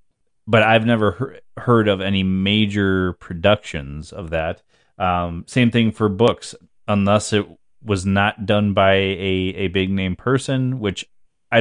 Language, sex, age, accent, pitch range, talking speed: English, male, 30-49, American, 90-105 Hz, 140 wpm